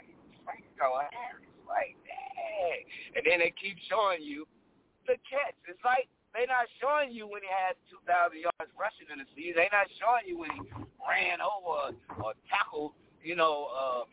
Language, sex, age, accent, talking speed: English, male, 60-79, American, 160 wpm